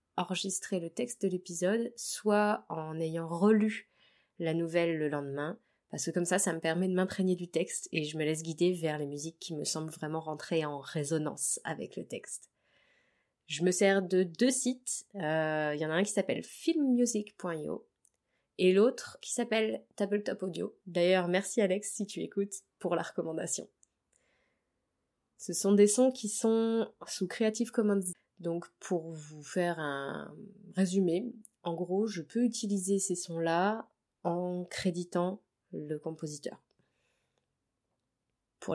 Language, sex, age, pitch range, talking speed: French, female, 20-39, 165-210 Hz, 155 wpm